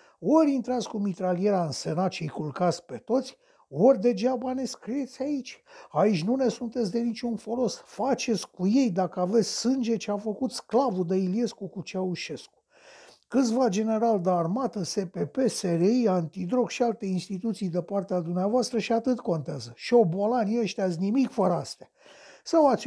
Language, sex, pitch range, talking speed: Romanian, male, 165-245 Hz, 160 wpm